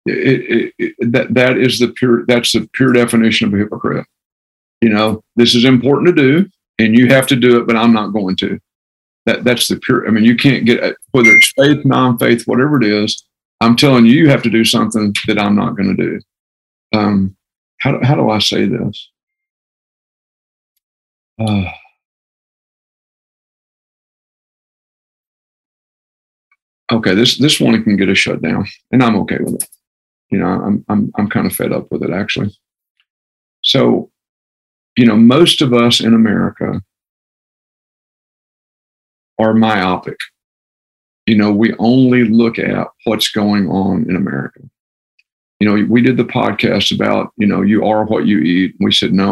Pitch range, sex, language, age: 100-120 Hz, male, English, 50-69